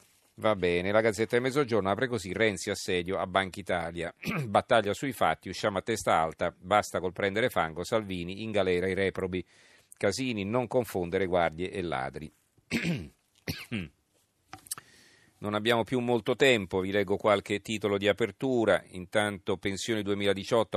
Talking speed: 140 wpm